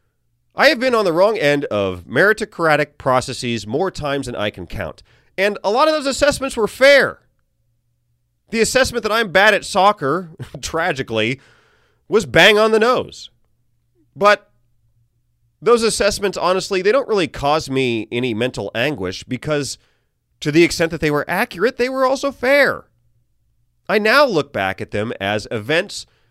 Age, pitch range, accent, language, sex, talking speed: 30-49, 110-170 Hz, American, English, male, 155 wpm